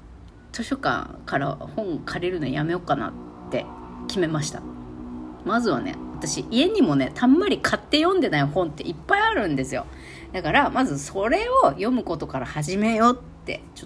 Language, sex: Japanese, female